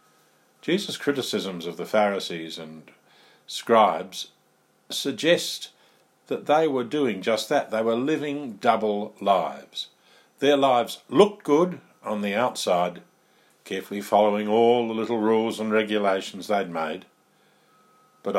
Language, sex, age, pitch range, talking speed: English, male, 50-69, 95-140 Hz, 120 wpm